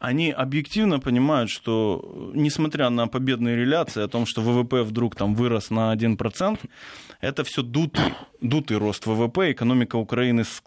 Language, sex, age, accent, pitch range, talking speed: Russian, male, 20-39, native, 120-155 Hz, 140 wpm